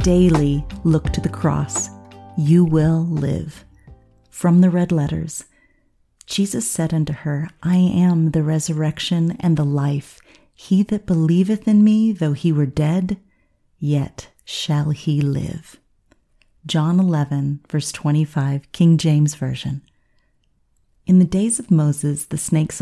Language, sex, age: English, female, 40-59